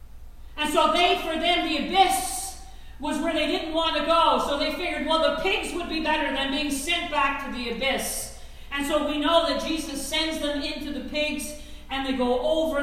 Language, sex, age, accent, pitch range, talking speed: English, female, 50-69, American, 235-315 Hz, 210 wpm